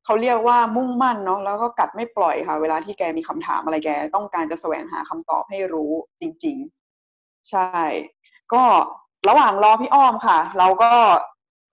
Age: 20-39